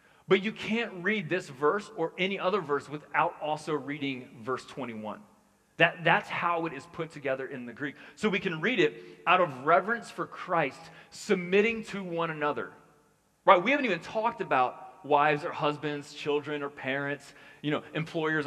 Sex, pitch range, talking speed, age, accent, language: male, 145-185 Hz, 175 wpm, 30-49, American, English